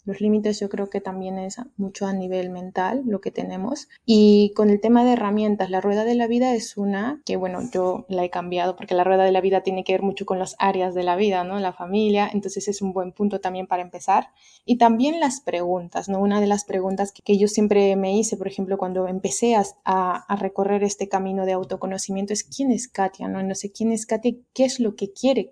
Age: 20-39